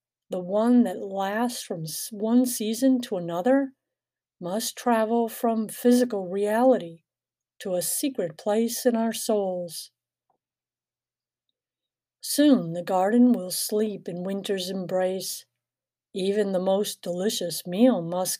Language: English